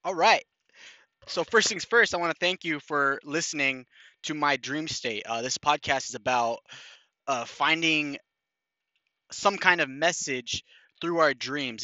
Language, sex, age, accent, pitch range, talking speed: English, male, 20-39, American, 125-160 Hz, 155 wpm